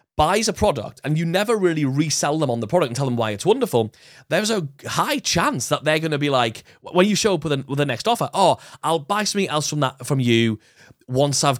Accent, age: British, 30-49